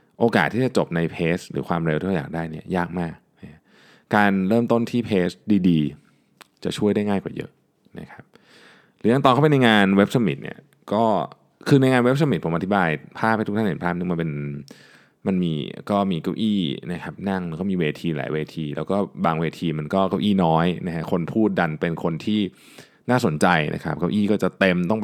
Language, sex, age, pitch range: Thai, male, 20-39, 85-115 Hz